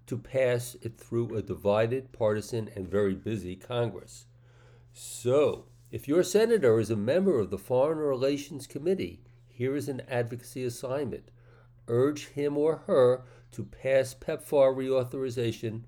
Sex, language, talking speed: male, English, 135 wpm